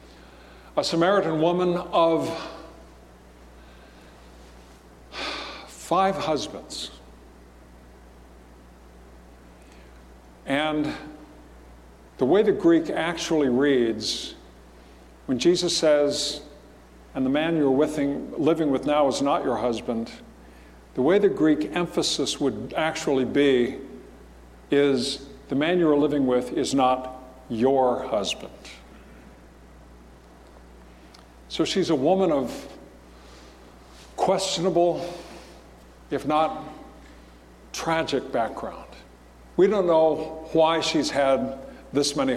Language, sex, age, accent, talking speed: English, male, 60-79, American, 90 wpm